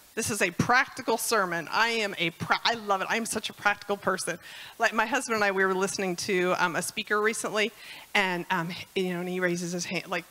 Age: 40-59